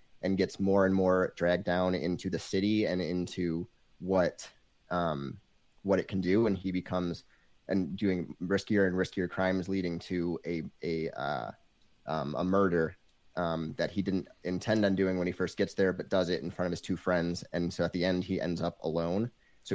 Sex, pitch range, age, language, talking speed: male, 90-100 Hz, 30-49, English, 200 wpm